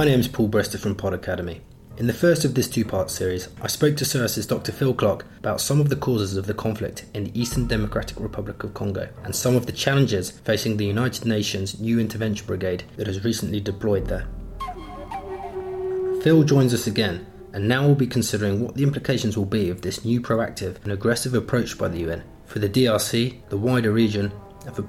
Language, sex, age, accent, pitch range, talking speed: English, male, 30-49, British, 100-125 Hz, 205 wpm